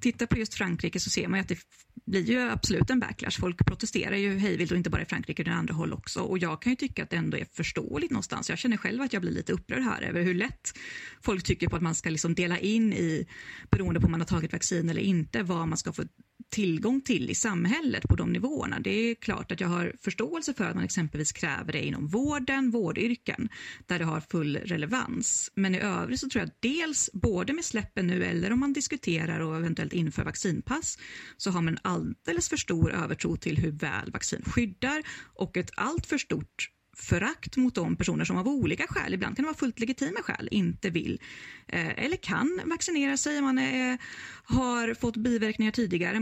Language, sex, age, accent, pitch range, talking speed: Swedish, female, 30-49, native, 175-240 Hz, 215 wpm